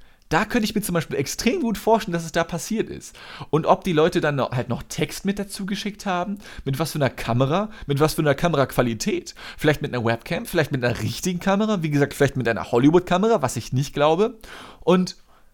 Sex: male